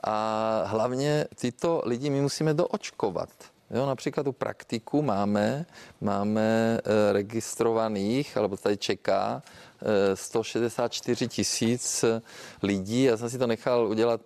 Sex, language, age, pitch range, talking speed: male, Czech, 40-59, 110-130 Hz, 110 wpm